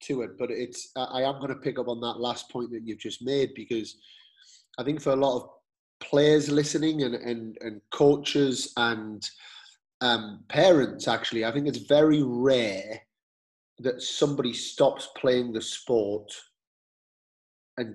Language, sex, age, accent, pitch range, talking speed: English, male, 30-49, British, 115-135 Hz, 155 wpm